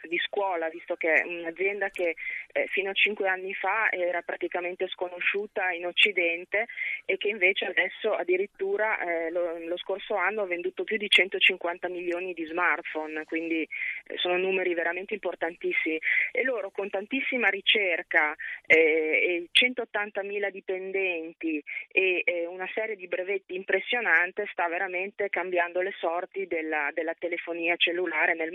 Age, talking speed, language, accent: 20-39, 140 wpm, Italian, native